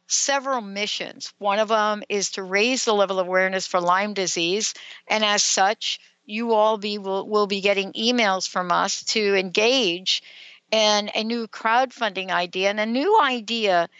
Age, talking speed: 60-79, 165 wpm